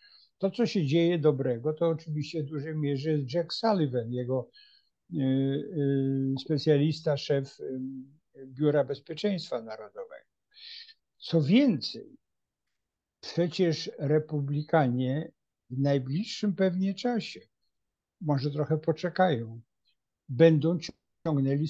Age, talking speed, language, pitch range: 50-69, 90 wpm, Polish, 135-165 Hz